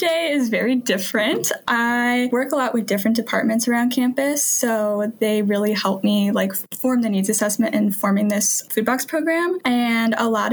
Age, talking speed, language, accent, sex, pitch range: 10-29, 175 wpm, English, American, female, 210-255 Hz